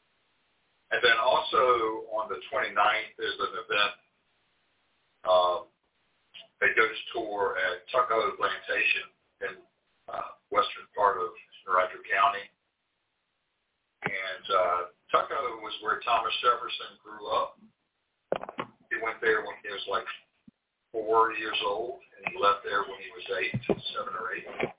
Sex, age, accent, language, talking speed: male, 50-69, American, English, 135 wpm